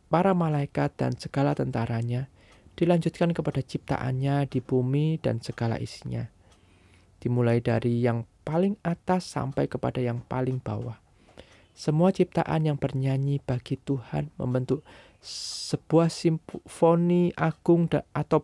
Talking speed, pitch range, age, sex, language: 110 wpm, 120-160 Hz, 20-39, male, Indonesian